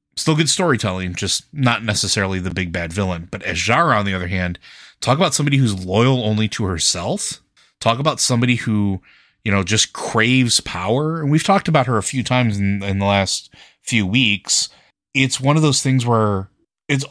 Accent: American